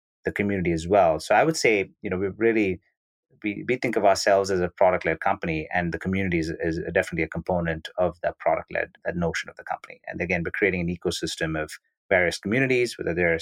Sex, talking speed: male, 210 wpm